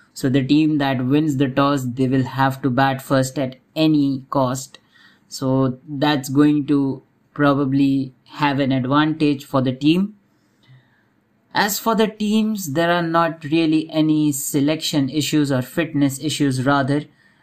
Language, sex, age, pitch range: English, male, 20-39, 130-145 Hz